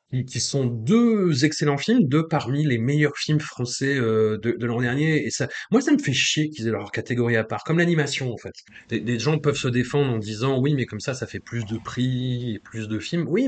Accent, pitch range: French, 110-150 Hz